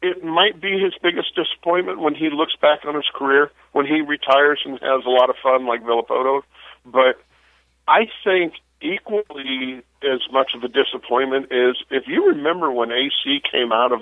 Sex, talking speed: male, 180 wpm